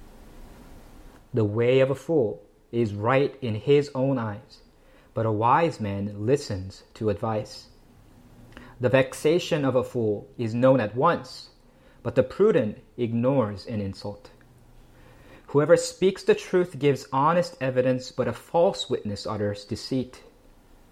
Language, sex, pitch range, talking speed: English, male, 115-140 Hz, 130 wpm